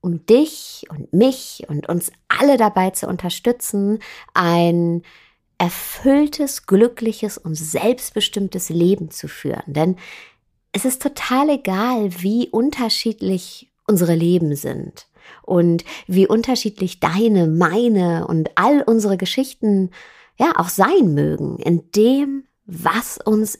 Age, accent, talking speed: 50-69, German, 115 wpm